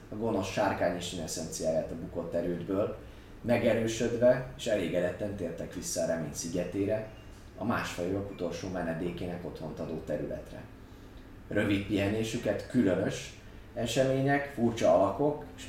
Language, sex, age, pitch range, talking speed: Hungarian, male, 30-49, 95-120 Hz, 105 wpm